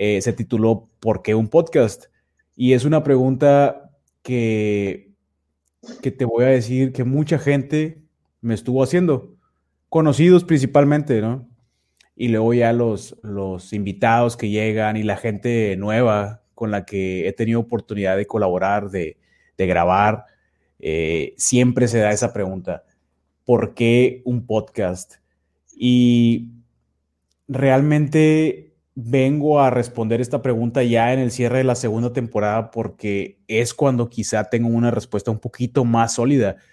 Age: 30-49